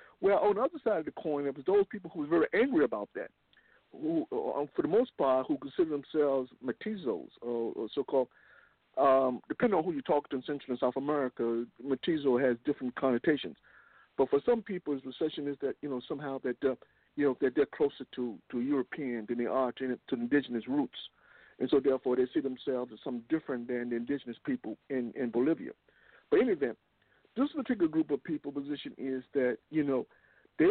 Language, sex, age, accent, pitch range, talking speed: English, male, 50-69, American, 130-175 Hz, 200 wpm